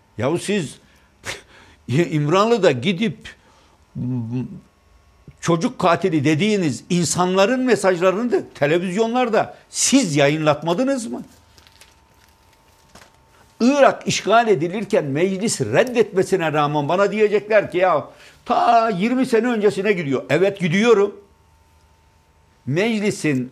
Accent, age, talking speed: native, 60-79, 85 wpm